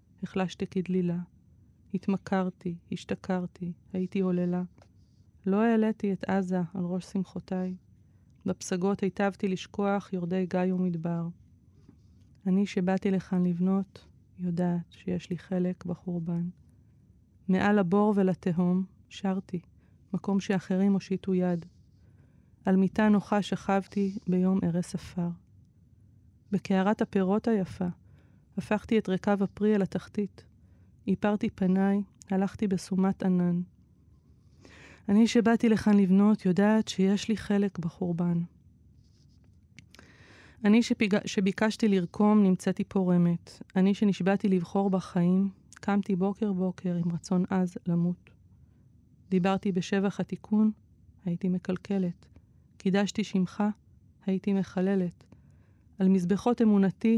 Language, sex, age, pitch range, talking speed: Hebrew, female, 20-39, 180-200 Hz, 100 wpm